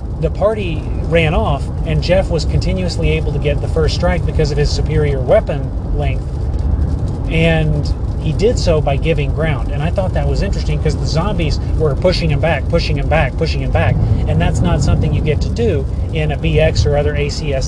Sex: male